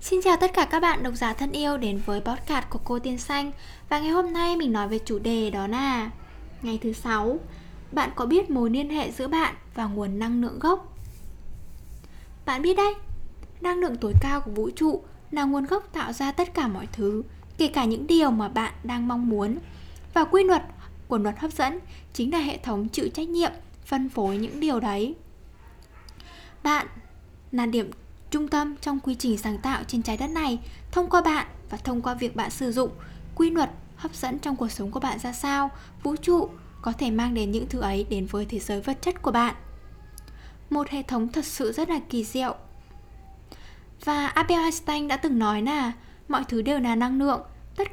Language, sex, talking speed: Vietnamese, female, 210 wpm